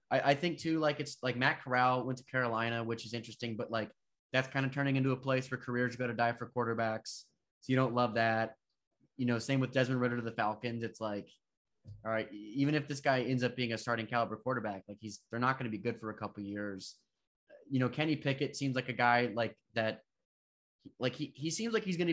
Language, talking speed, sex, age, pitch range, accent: English, 240 wpm, male, 20-39, 115-130 Hz, American